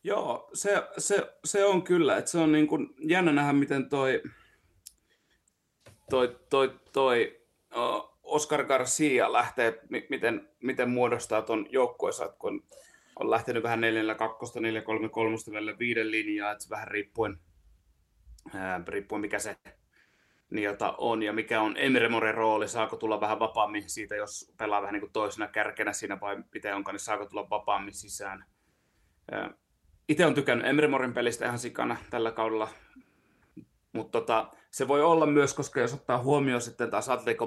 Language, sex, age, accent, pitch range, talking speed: Finnish, male, 30-49, native, 105-135 Hz, 155 wpm